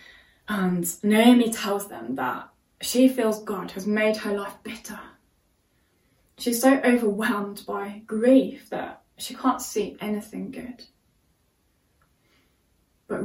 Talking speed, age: 115 wpm, 20-39